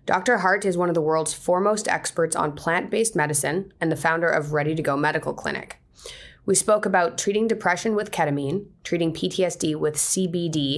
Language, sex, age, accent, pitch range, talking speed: English, female, 30-49, American, 140-180 Hz, 180 wpm